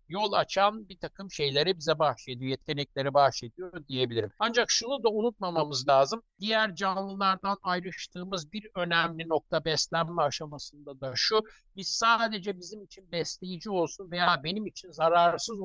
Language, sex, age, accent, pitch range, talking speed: Turkish, male, 60-79, native, 145-200 Hz, 135 wpm